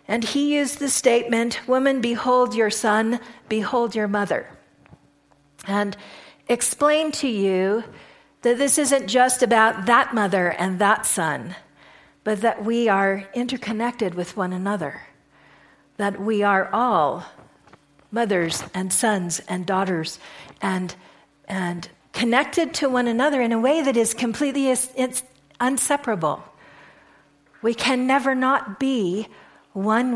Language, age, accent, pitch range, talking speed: English, 50-69, American, 200-250 Hz, 125 wpm